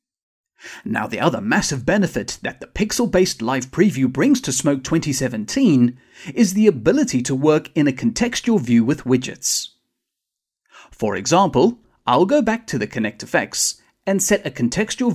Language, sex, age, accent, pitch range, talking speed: English, male, 40-59, British, 130-215 Hz, 150 wpm